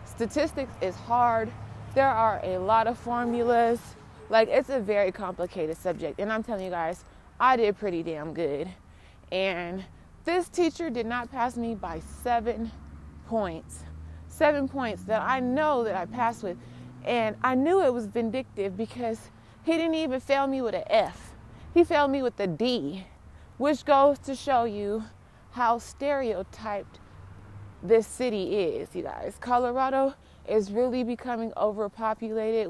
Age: 30-49